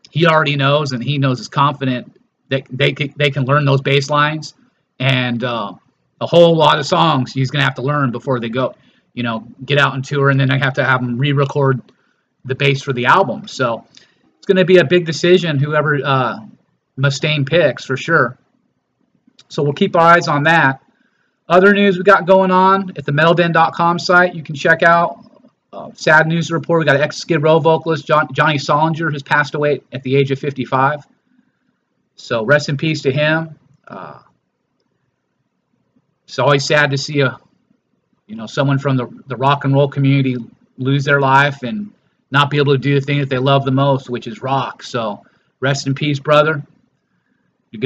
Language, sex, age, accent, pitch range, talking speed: English, male, 30-49, American, 135-160 Hz, 195 wpm